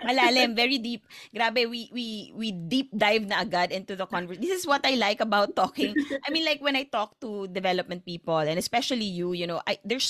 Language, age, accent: Filipino, 20-39, native